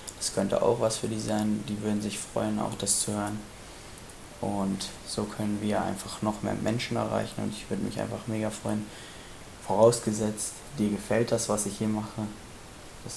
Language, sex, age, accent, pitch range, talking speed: German, male, 20-39, German, 100-110 Hz, 180 wpm